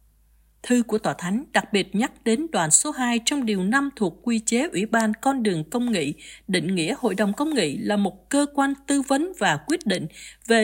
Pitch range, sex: 195-275 Hz, female